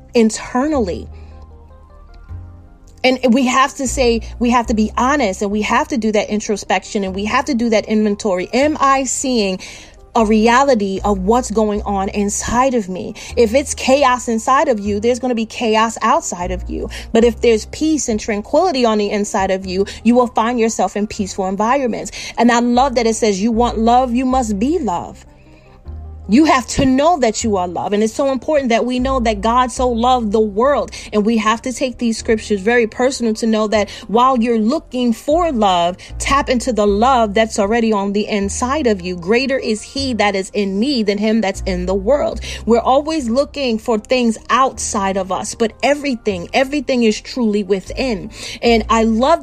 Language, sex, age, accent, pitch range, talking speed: English, female, 30-49, American, 205-250 Hz, 195 wpm